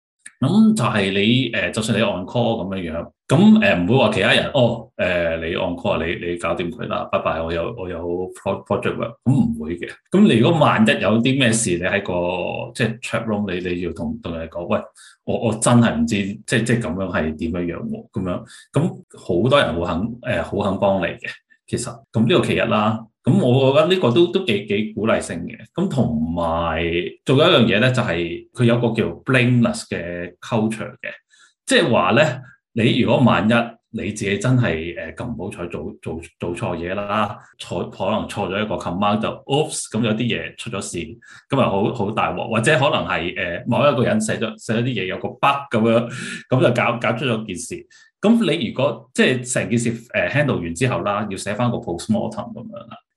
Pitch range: 100-125 Hz